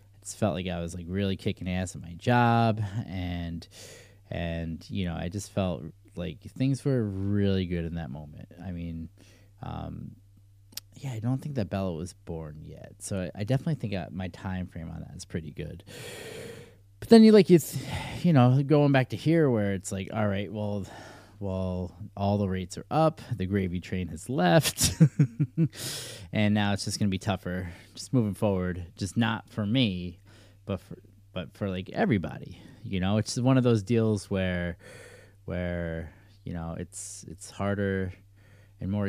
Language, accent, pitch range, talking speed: English, American, 90-110 Hz, 180 wpm